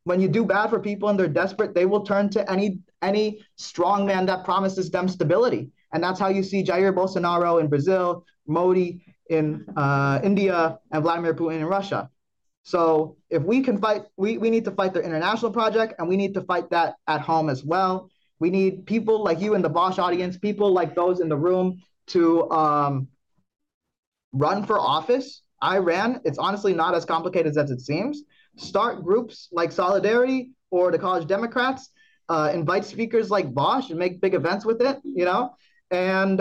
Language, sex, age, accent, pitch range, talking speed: English, male, 20-39, American, 160-205 Hz, 190 wpm